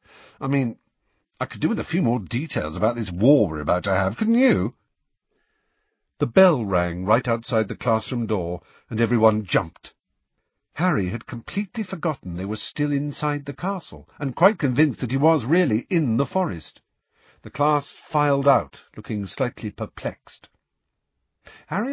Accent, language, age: British, English, 50-69